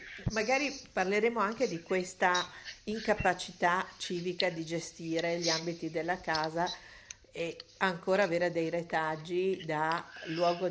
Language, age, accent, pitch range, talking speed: Italian, 50-69, native, 165-190 Hz, 110 wpm